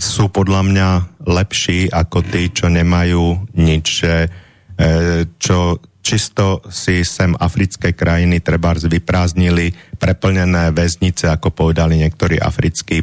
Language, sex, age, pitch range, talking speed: Slovak, male, 30-49, 85-95 Hz, 110 wpm